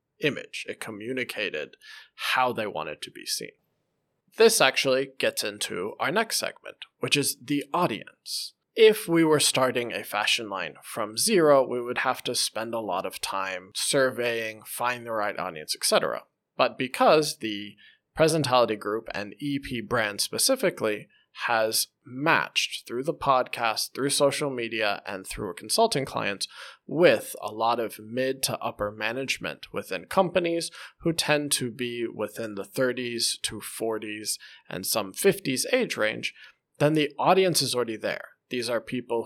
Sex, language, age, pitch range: male, Chinese, 20-39, 115-160 Hz